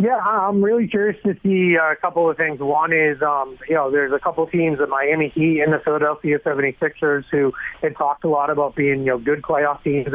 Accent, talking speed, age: American, 225 wpm, 30-49